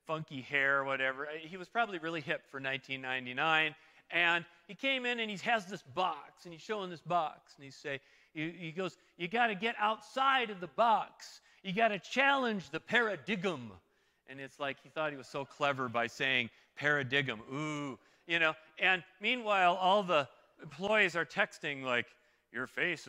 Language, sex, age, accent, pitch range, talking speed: English, male, 40-59, American, 155-225 Hz, 175 wpm